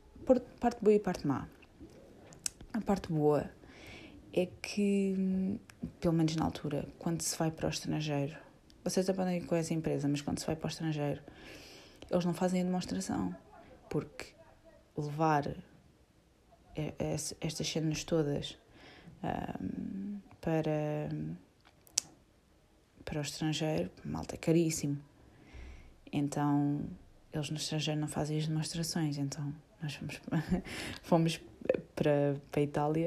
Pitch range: 145-175 Hz